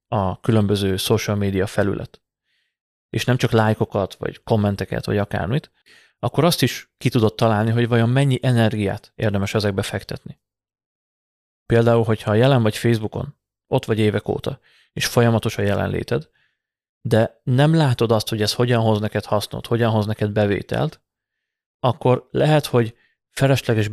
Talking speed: 140 wpm